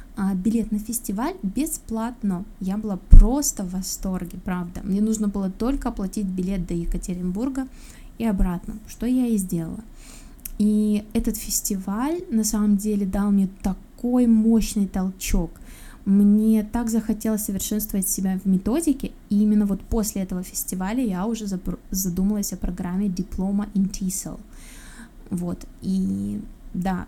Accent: native